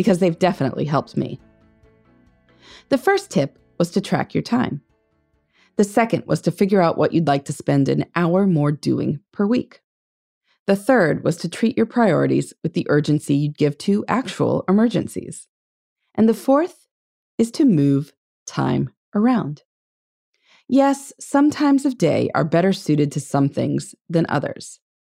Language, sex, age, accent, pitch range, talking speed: English, female, 30-49, American, 145-235 Hz, 155 wpm